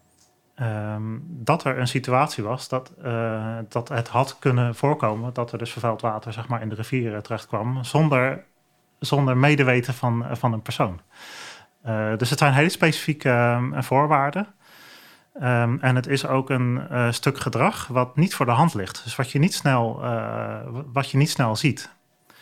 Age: 30-49